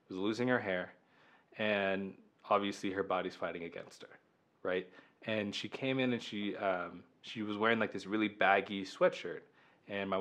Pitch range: 95-105 Hz